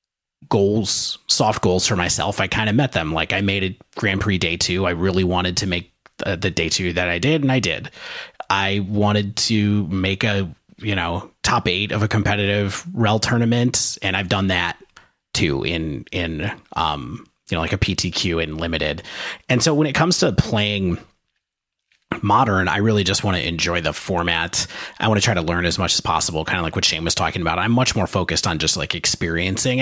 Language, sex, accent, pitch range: English, male, American, 85-110 Hz